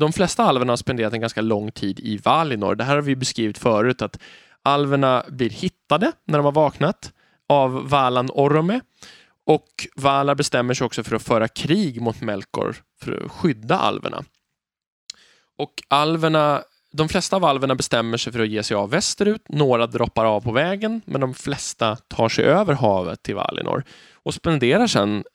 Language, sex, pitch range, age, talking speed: Swedish, male, 110-145 Hz, 20-39, 175 wpm